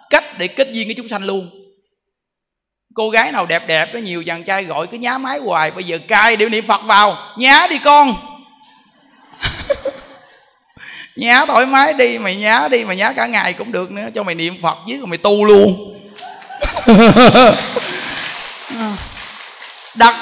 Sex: male